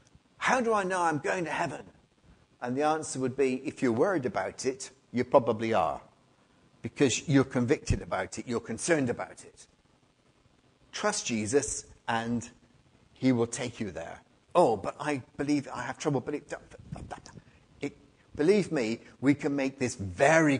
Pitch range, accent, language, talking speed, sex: 115-145 Hz, British, English, 160 wpm, male